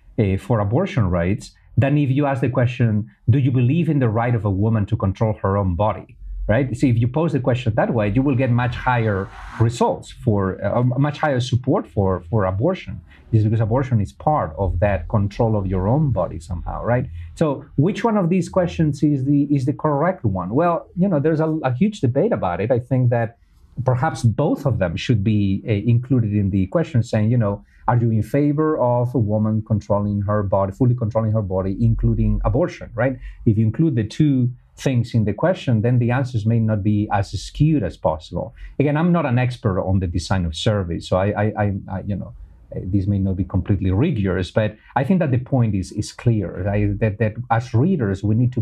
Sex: male